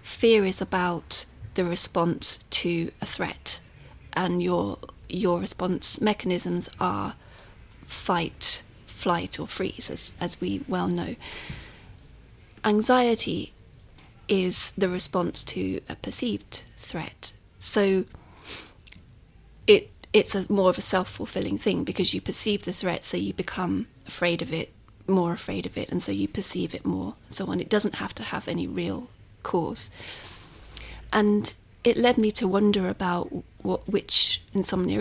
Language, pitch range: English, 175-215 Hz